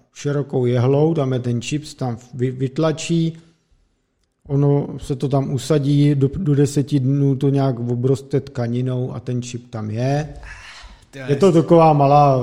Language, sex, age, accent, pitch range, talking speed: Czech, male, 50-69, native, 130-160 Hz, 140 wpm